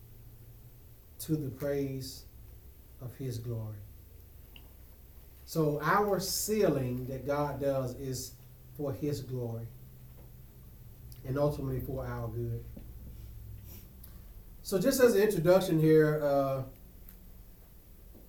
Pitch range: 115-170 Hz